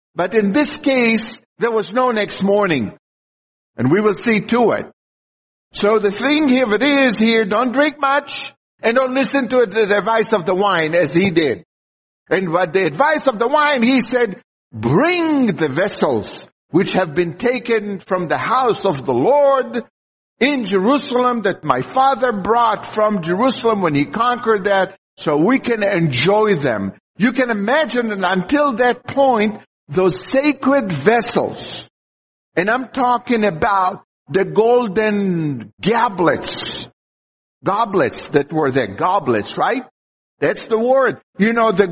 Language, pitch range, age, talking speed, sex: English, 180-245 Hz, 60-79, 150 wpm, male